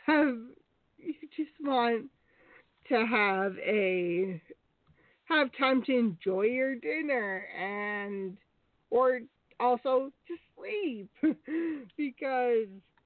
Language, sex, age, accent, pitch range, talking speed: English, female, 50-69, American, 195-275 Hz, 85 wpm